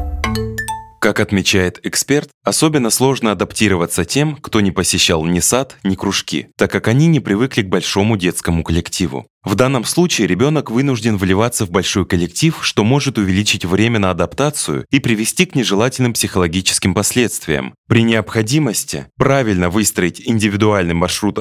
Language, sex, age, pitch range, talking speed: Russian, male, 20-39, 95-125 Hz, 140 wpm